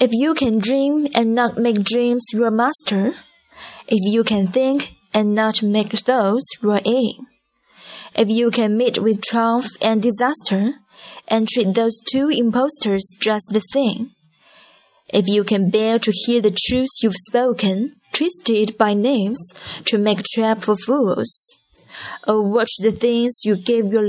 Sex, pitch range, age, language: female, 200-245 Hz, 10-29, Chinese